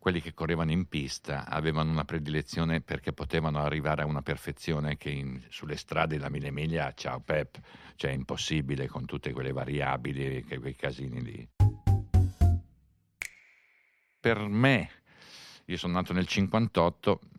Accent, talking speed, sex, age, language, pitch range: native, 140 wpm, male, 50-69, Italian, 75-100 Hz